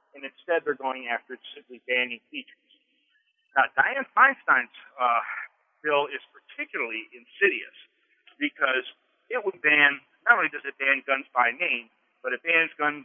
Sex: male